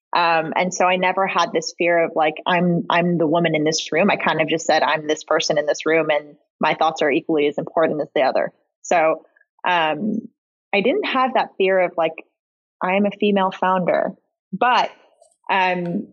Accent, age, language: American, 20-39, English